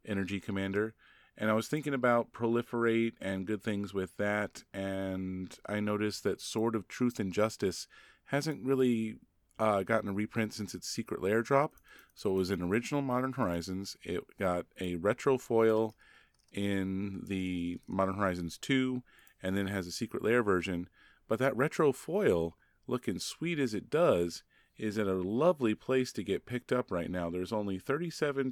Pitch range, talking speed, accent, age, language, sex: 95-115 Hz, 170 wpm, American, 30-49, English, male